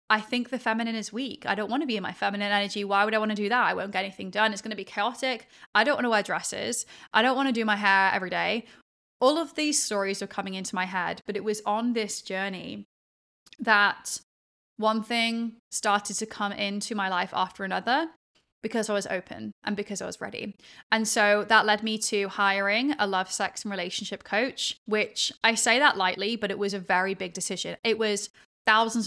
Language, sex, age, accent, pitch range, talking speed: English, female, 20-39, British, 195-230 Hz, 225 wpm